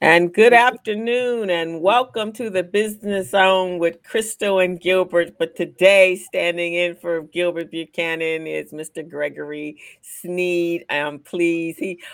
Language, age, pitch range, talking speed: English, 50-69, 150-185 Hz, 140 wpm